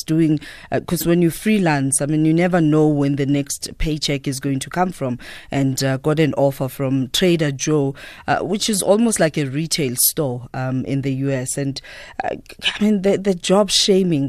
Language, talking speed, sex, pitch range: English, 200 wpm, female, 135-160 Hz